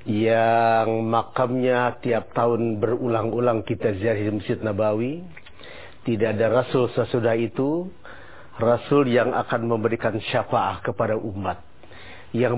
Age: 40-59